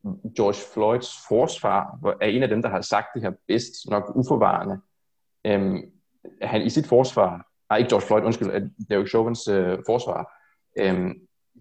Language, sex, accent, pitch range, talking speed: Danish, male, native, 100-125 Hz, 165 wpm